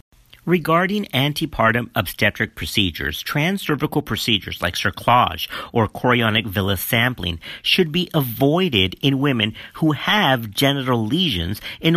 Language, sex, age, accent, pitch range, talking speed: English, male, 50-69, American, 100-155 Hz, 110 wpm